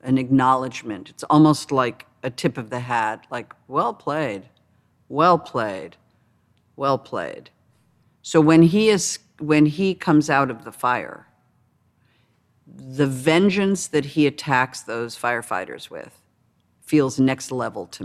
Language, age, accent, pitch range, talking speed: English, 50-69, American, 125-150 Hz, 135 wpm